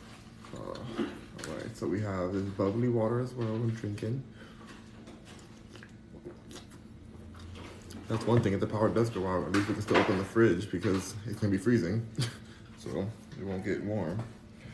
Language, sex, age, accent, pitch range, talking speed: English, male, 20-39, American, 105-115 Hz, 165 wpm